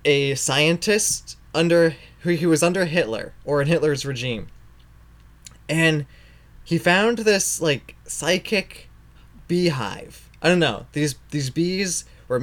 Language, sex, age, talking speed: English, male, 20-39, 125 wpm